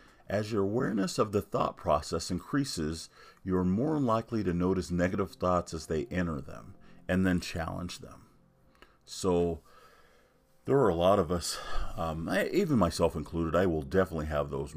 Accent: American